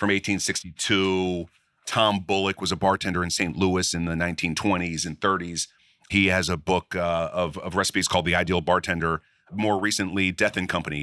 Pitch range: 85-100 Hz